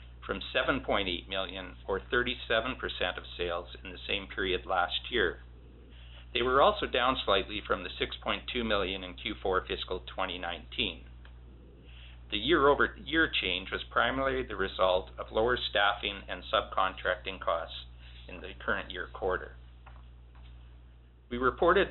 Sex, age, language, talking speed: male, 50-69, English, 130 wpm